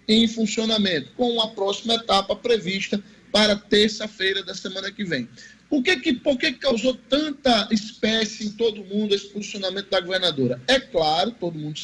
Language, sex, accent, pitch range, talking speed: Portuguese, male, Brazilian, 190-245 Hz, 150 wpm